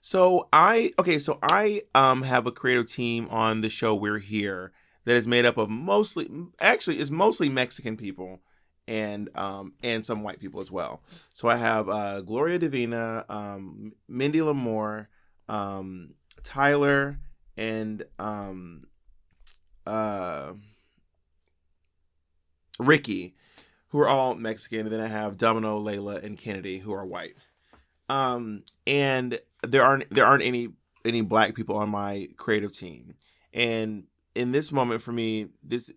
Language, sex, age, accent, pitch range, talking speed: English, male, 20-39, American, 105-120 Hz, 140 wpm